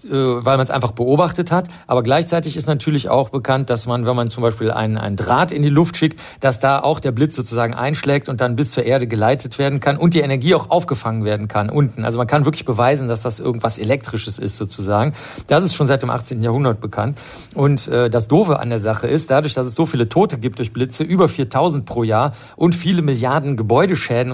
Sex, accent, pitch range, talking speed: male, German, 120-150 Hz, 225 wpm